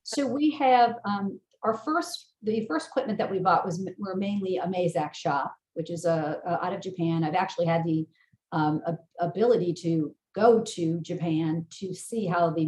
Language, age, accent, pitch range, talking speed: English, 40-59, American, 170-205 Hz, 180 wpm